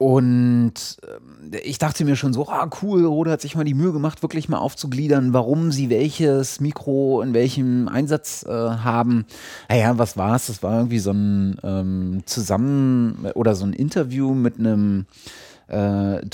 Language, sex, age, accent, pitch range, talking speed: German, male, 30-49, German, 110-135 Hz, 165 wpm